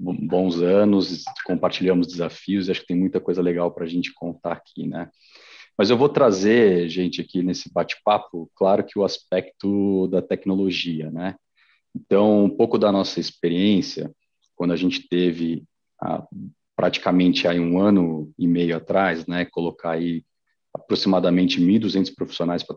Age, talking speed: 40-59, 150 wpm